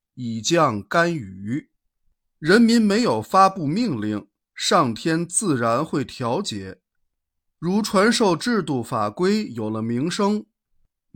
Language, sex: Chinese, male